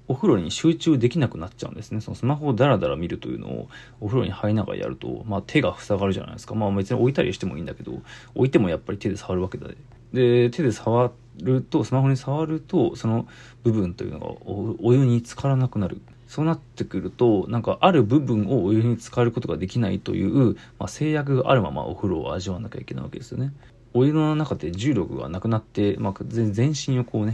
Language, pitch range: Japanese, 100-125 Hz